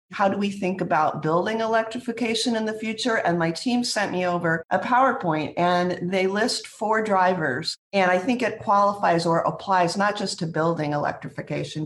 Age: 50-69